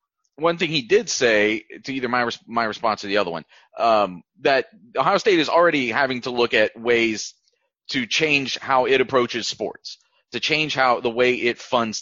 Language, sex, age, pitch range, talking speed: English, male, 30-49, 115-165 Hz, 190 wpm